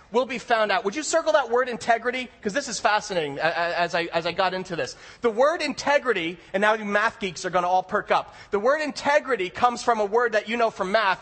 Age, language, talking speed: 30-49, English, 250 wpm